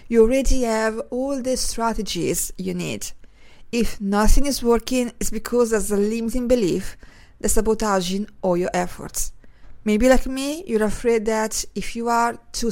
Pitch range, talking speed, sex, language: 205-245 Hz, 155 wpm, female, English